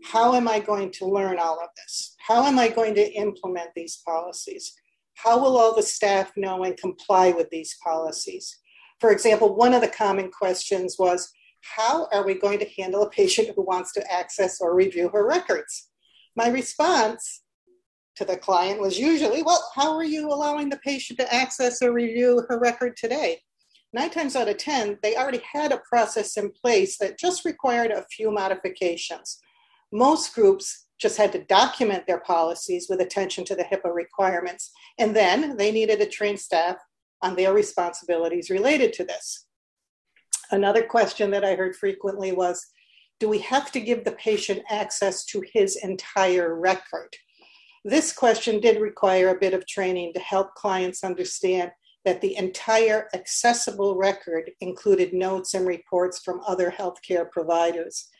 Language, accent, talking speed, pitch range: English, American, 165 wpm, 185-245 Hz